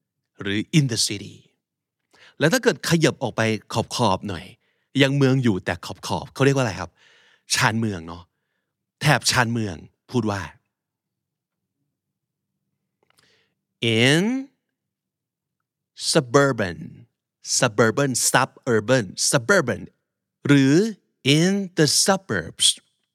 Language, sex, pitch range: Thai, male, 110-150 Hz